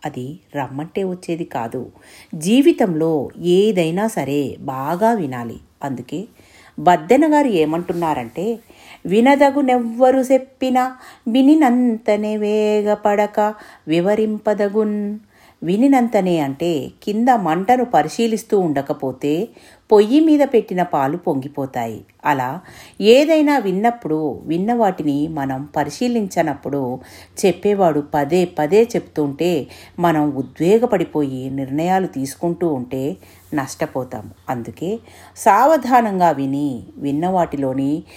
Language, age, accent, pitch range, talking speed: Telugu, 50-69, native, 145-225 Hz, 75 wpm